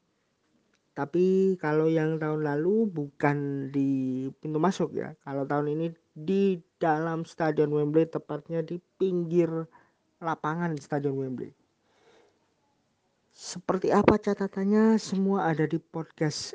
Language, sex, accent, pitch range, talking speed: Indonesian, male, native, 150-185 Hz, 110 wpm